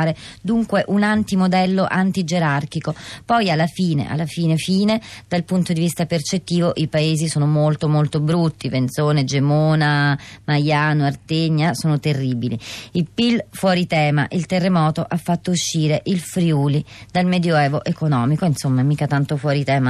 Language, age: Italian, 30-49